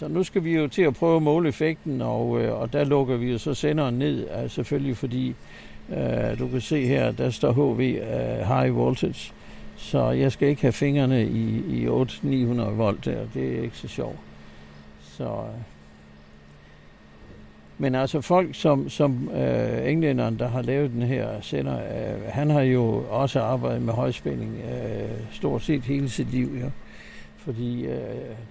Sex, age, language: male, 60-79, Danish